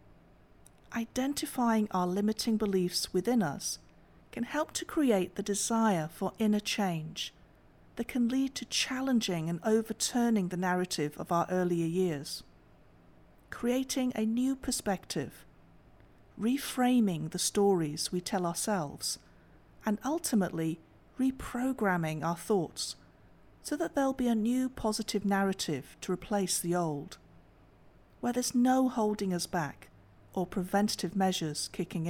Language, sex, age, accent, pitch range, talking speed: English, female, 50-69, British, 170-240 Hz, 120 wpm